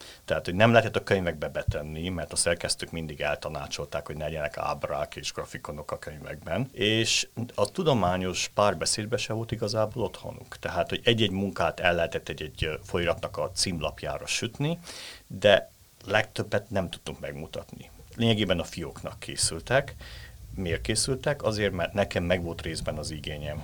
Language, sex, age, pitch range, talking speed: Hungarian, male, 50-69, 85-115 Hz, 145 wpm